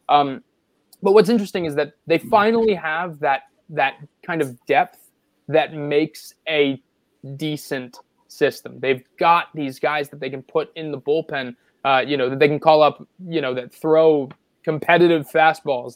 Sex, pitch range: male, 135-165 Hz